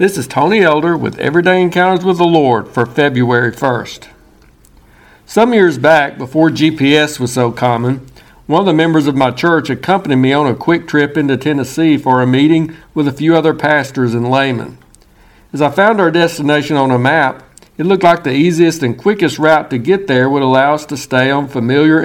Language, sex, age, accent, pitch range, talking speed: English, male, 60-79, American, 130-165 Hz, 195 wpm